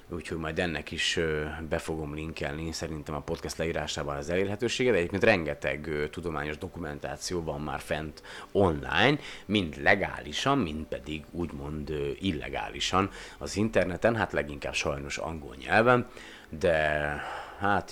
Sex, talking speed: male, 130 wpm